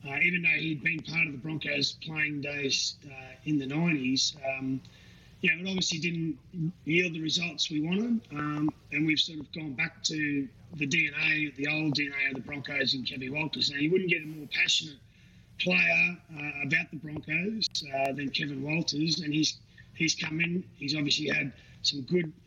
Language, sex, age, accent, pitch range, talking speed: English, male, 30-49, Australian, 145-170 Hz, 190 wpm